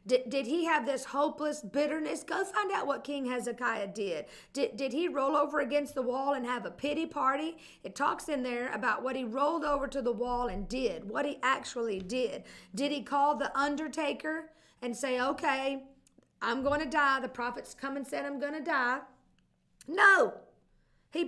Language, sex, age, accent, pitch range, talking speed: English, female, 50-69, American, 260-340 Hz, 190 wpm